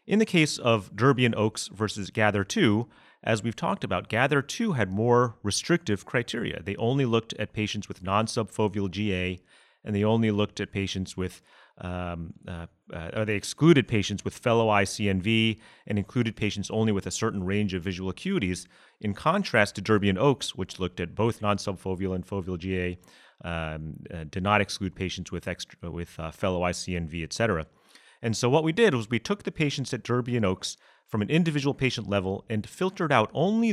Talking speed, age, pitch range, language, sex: 190 wpm, 30-49, 95-120 Hz, English, male